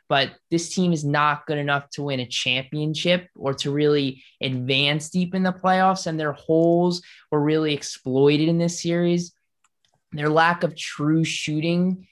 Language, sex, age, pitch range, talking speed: English, male, 20-39, 140-160 Hz, 165 wpm